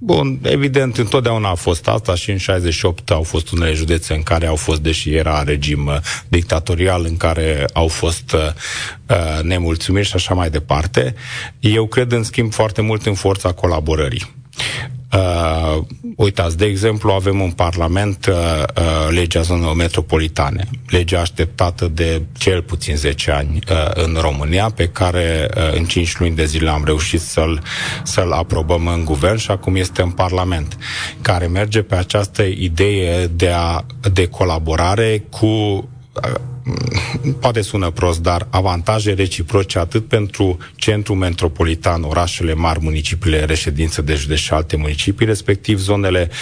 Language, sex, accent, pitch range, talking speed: Romanian, male, native, 80-105 Hz, 145 wpm